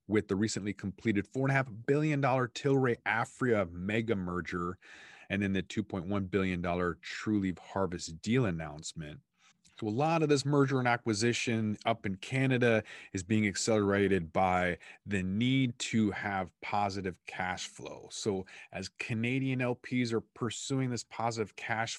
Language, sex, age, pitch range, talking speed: English, male, 30-49, 90-110 Hz, 135 wpm